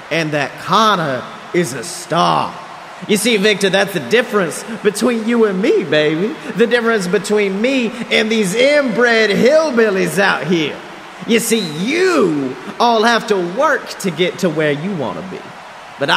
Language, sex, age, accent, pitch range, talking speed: English, male, 30-49, American, 175-235 Hz, 155 wpm